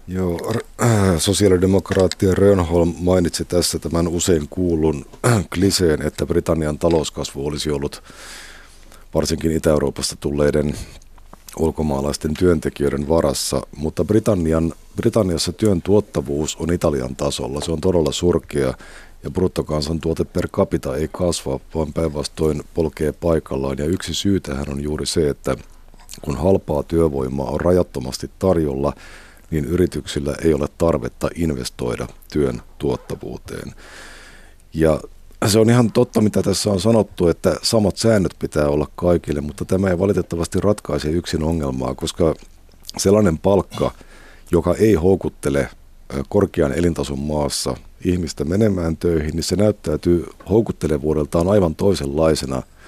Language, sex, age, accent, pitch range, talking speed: Finnish, male, 50-69, native, 75-90 Hz, 115 wpm